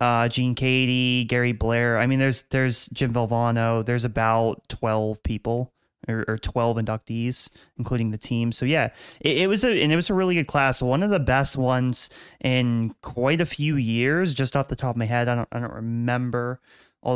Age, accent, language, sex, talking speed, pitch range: 30-49, American, English, male, 205 wpm, 115-130 Hz